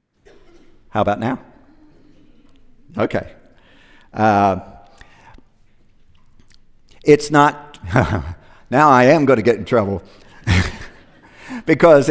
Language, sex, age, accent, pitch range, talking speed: English, male, 50-69, American, 130-185 Hz, 80 wpm